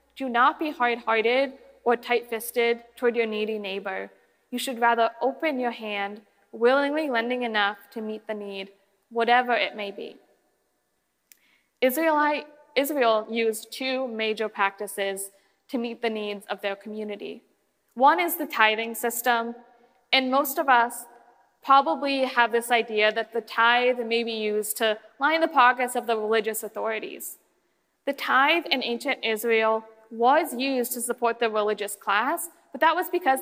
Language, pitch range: English, 215-260 Hz